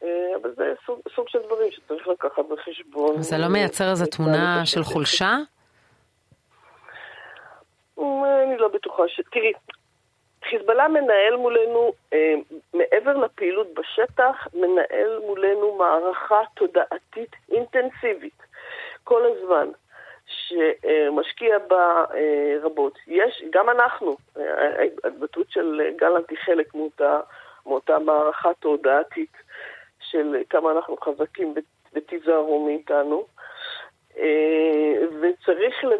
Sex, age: female, 40-59